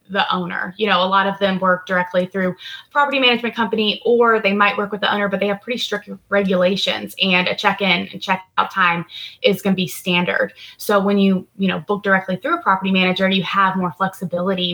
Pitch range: 185-210 Hz